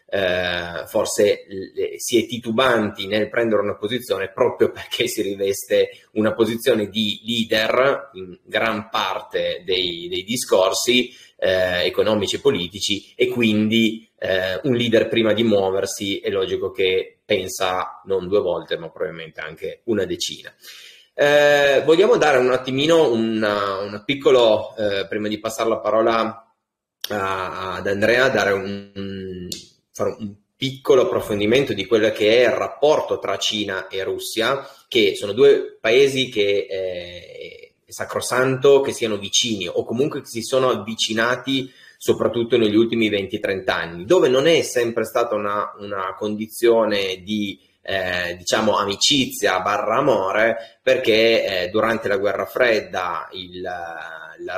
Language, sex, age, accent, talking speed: Italian, male, 30-49, native, 135 wpm